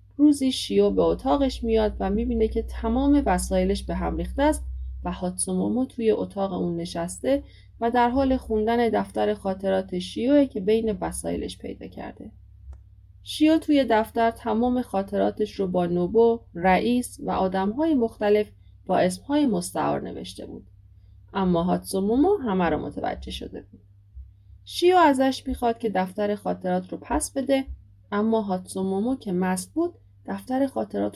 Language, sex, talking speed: Persian, female, 140 wpm